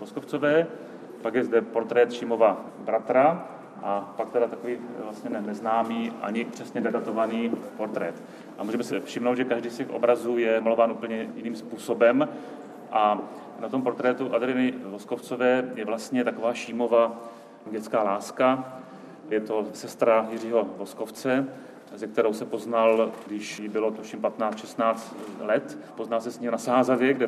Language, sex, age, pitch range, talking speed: Czech, male, 30-49, 110-125 Hz, 145 wpm